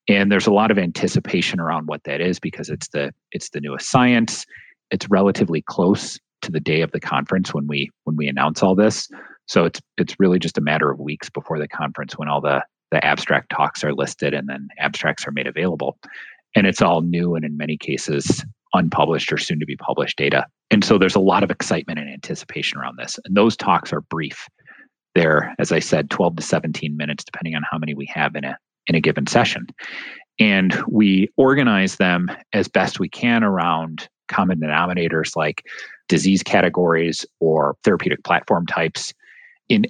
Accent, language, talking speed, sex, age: American, English, 195 wpm, male, 30-49